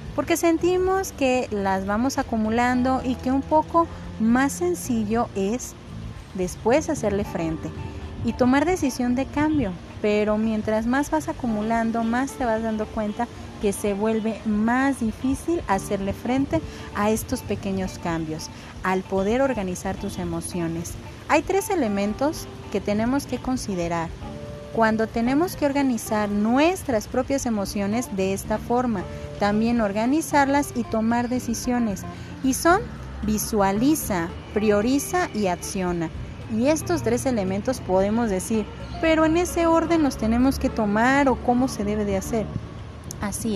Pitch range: 205-275 Hz